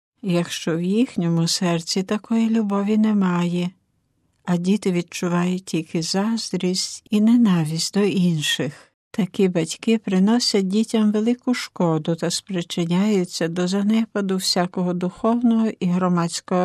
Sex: female